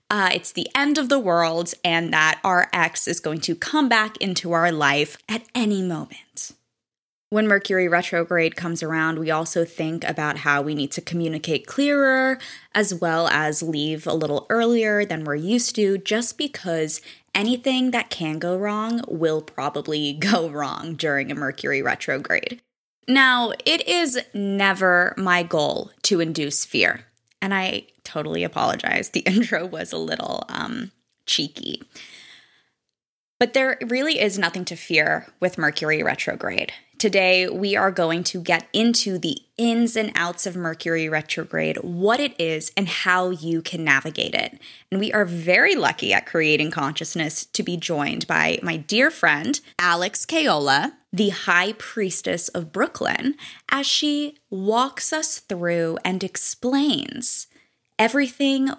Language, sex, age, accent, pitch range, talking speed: English, female, 10-29, American, 160-225 Hz, 150 wpm